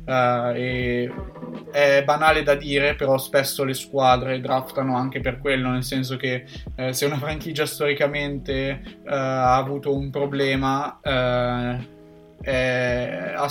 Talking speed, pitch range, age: 135 wpm, 125-140 Hz, 20-39